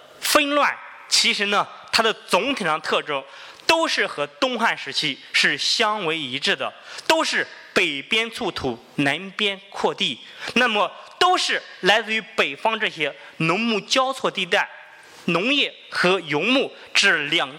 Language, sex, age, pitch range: Chinese, male, 20-39, 175-265 Hz